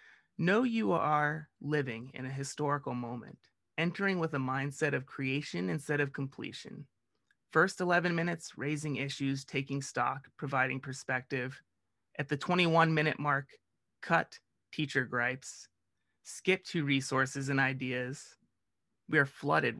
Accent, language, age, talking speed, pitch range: American, English, 30-49, 125 wpm, 130-155 Hz